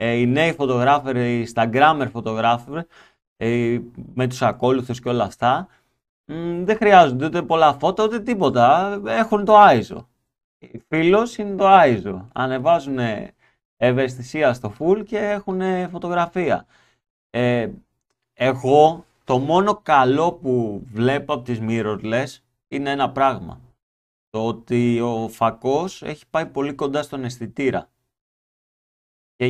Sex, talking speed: male, 120 wpm